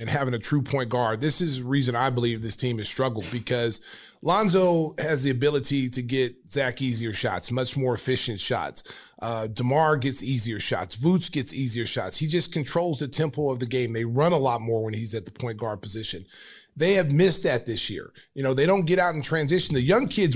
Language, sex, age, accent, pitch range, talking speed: English, male, 30-49, American, 120-160 Hz, 225 wpm